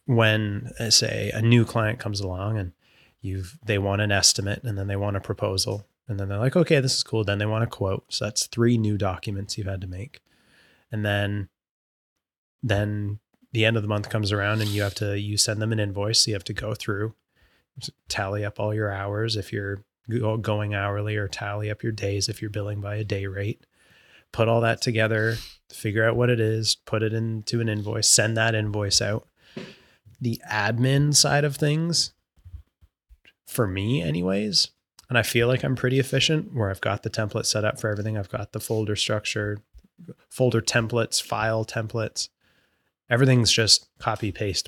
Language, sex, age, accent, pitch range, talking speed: English, male, 20-39, American, 100-115 Hz, 190 wpm